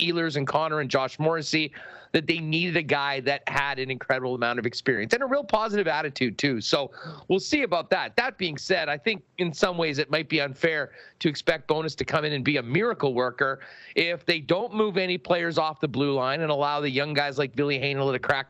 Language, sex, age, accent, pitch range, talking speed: English, male, 40-59, American, 150-200 Hz, 235 wpm